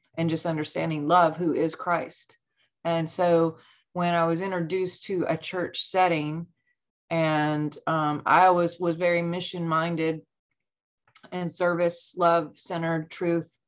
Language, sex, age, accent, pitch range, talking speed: English, female, 30-49, American, 155-175 Hz, 130 wpm